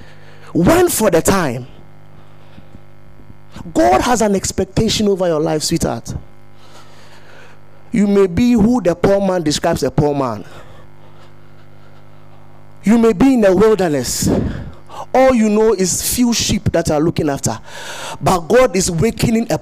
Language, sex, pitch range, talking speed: English, male, 130-210 Hz, 135 wpm